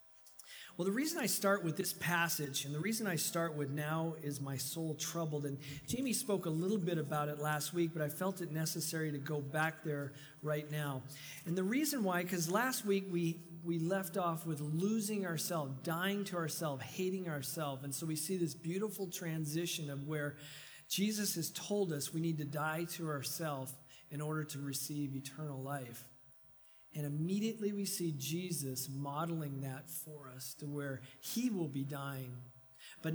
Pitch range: 140-175 Hz